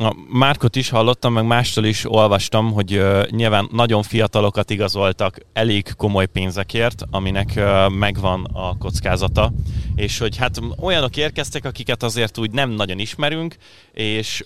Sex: male